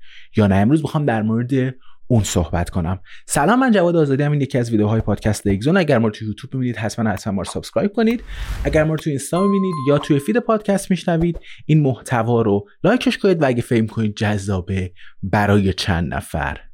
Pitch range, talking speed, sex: 100-155 Hz, 185 wpm, male